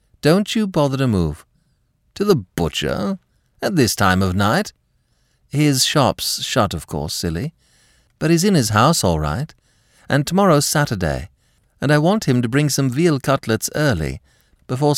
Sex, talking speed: male, 160 wpm